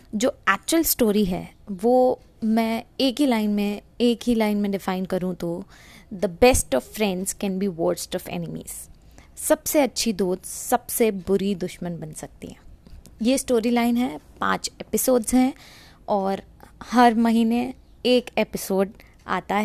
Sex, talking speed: female, 145 wpm